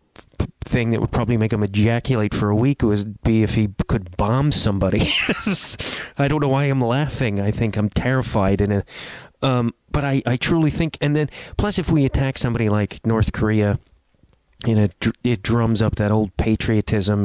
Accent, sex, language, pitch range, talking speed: American, male, English, 100-120 Hz, 190 wpm